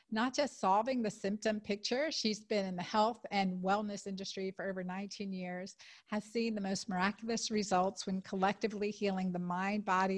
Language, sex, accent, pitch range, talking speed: English, female, American, 190-220 Hz, 175 wpm